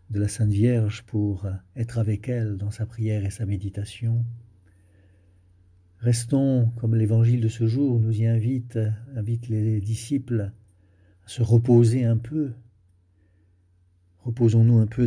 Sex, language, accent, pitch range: male, French, French, 90-120 Hz